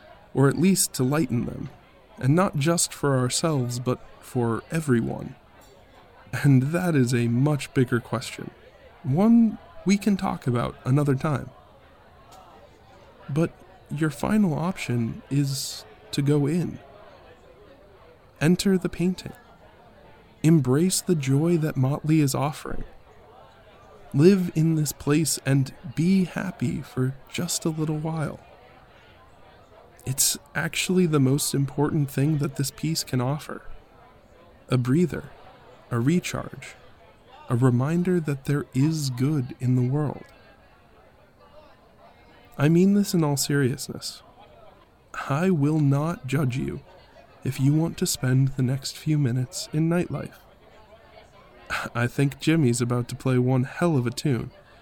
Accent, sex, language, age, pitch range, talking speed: American, male, English, 20-39, 130-165 Hz, 125 wpm